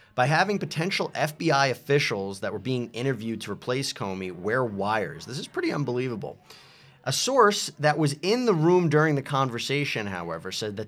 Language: English